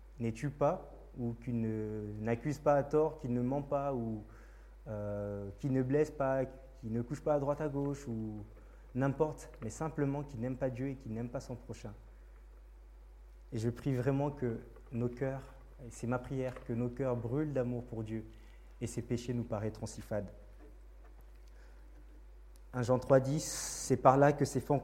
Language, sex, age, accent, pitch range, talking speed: French, male, 20-39, French, 110-145 Hz, 185 wpm